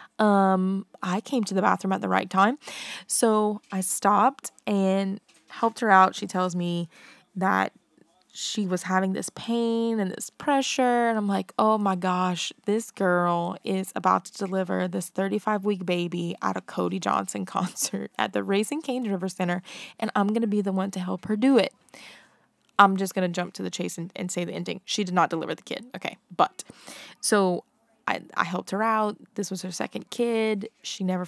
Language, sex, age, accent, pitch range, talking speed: English, female, 20-39, American, 185-215 Hz, 190 wpm